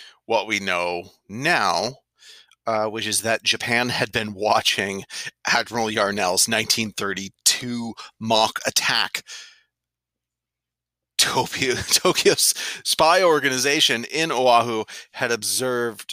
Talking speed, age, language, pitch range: 95 wpm, 30-49, English, 105-145 Hz